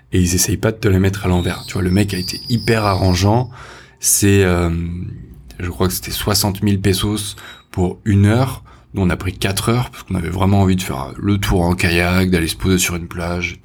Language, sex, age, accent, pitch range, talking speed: French, male, 20-39, French, 90-105 Hz, 235 wpm